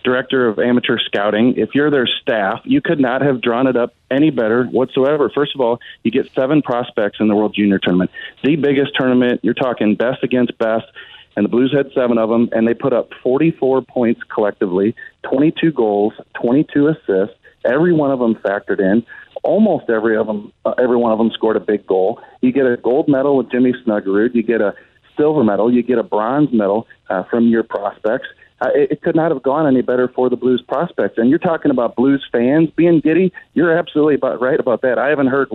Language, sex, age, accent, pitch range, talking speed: English, male, 40-59, American, 115-140 Hz, 210 wpm